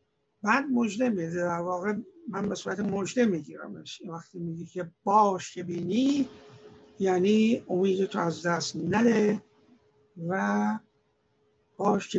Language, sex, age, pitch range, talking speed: Persian, male, 60-79, 170-210 Hz, 100 wpm